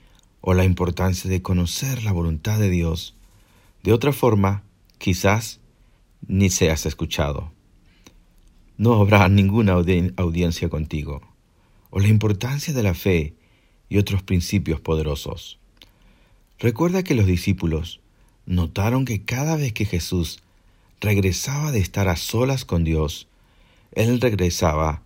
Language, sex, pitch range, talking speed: Spanish, male, 85-110 Hz, 120 wpm